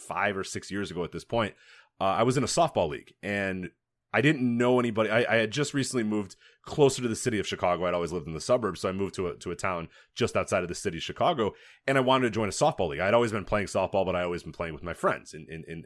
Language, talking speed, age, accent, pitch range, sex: English, 290 wpm, 30-49, American, 95-125 Hz, male